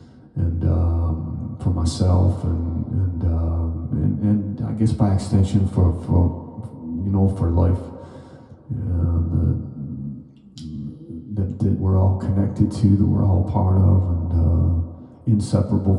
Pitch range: 85-105 Hz